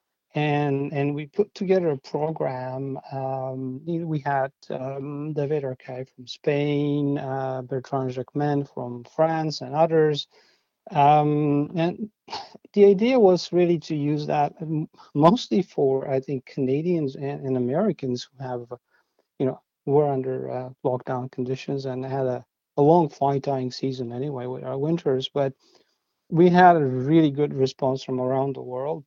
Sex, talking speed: male, 150 wpm